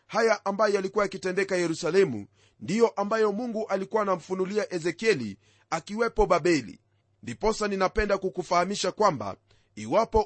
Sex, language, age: male, Swahili, 40-59